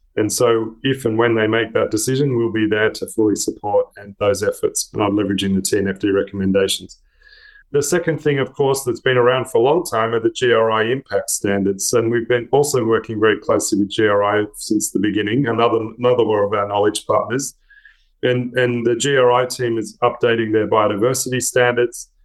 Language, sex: English, male